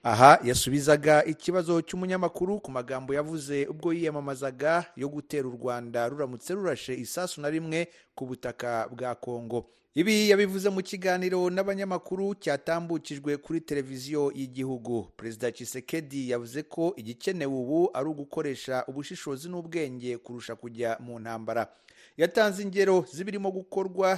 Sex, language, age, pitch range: male, Filipino, 40-59, 125-160 Hz